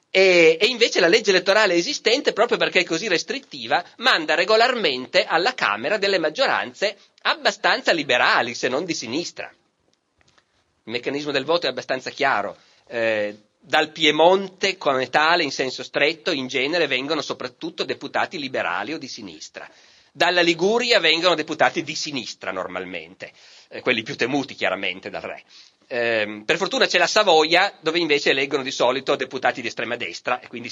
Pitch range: 145-200 Hz